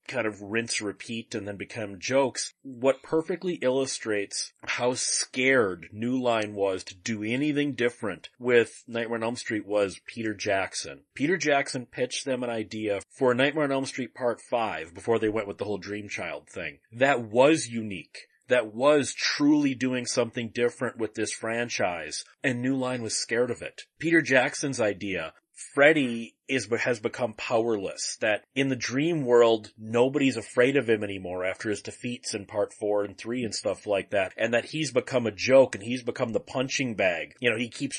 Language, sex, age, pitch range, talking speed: English, male, 30-49, 110-135 Hz, 185 wpm